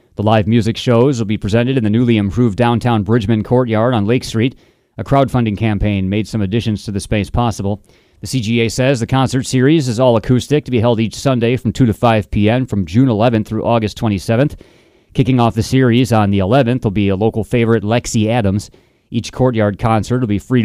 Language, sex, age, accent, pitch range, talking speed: English, male, 30-49, American, 105-125 Hz, 210 wpm